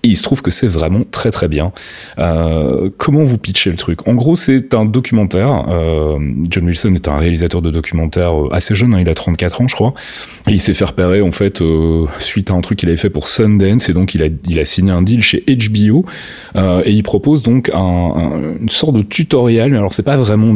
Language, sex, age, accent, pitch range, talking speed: French, male, 30-49, French, 90-110 Hz, 235 wpm